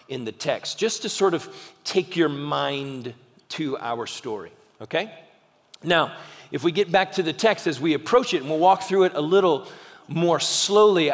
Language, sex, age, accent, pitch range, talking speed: English, male, 40-59, American, 155-200 Hz, 190 wpm